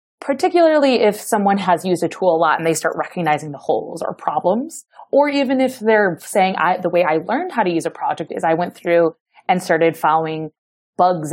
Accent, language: American, English